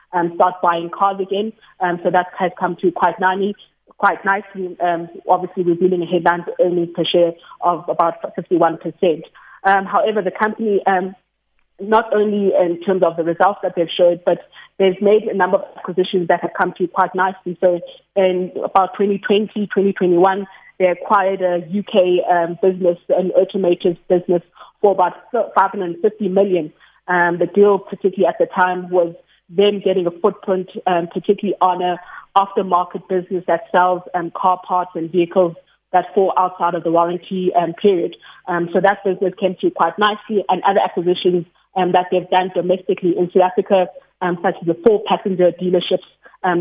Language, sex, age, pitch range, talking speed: English, female, 20-39, 175-195 Hz, 170 wpm